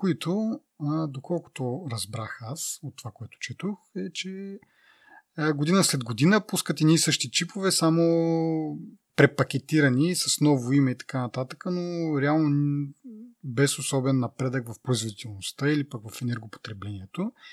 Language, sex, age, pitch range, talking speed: Bulgarian, male, 30-49, 120-160 Hz, 125 wpm